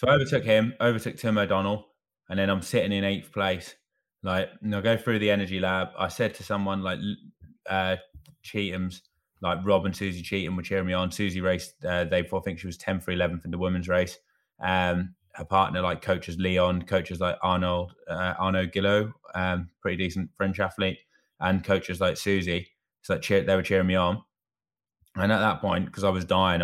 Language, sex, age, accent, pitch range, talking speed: English, male, 20-39, British, 90-95 Hz, 205 wpm